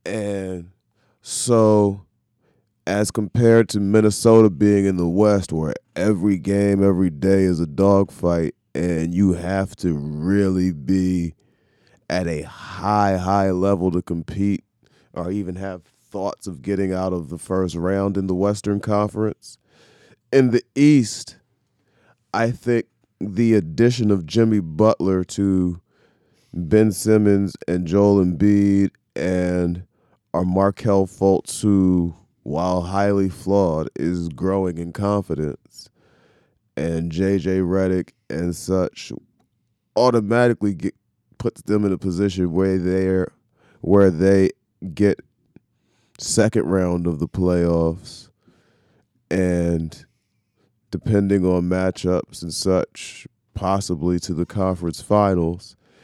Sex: male